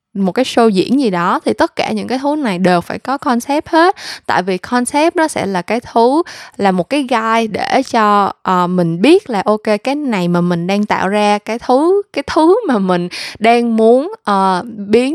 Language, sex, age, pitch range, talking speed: Vietnamese, female, 10-29, 185-250 Hz, 215 wpm